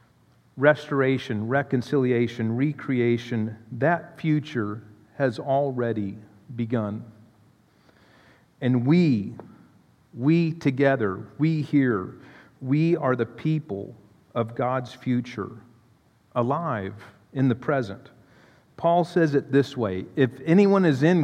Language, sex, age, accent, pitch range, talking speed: English, male, 50-69, American, 125-175 Hz, 95 wpm